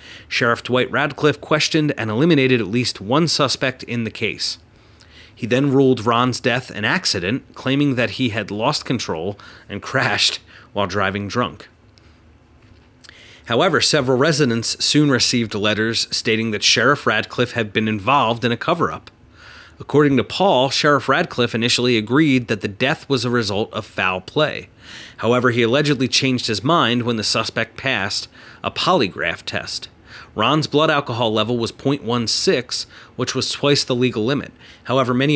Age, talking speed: 30-49, 155 wpm